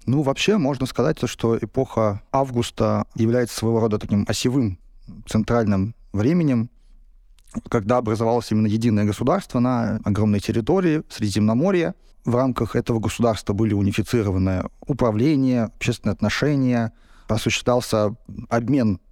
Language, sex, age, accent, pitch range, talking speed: Russian, male, 30-49, native, 105-125 Hz, 105 wpm